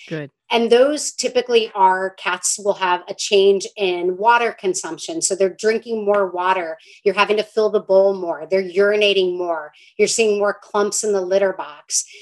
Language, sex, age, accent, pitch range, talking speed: English, female, 30-49, American, 190-230 Hz, 170 wpm